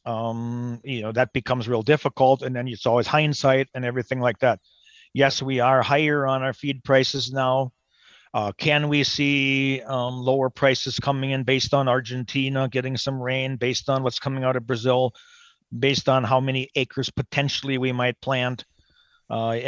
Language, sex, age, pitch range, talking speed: English, male, 40-59, 125-140 Hz, 175 wpm